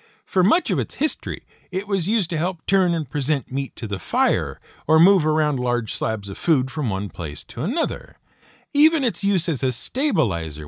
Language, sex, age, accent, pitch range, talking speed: English, male, 50-69, American, 115-185 Hz, 195 wpm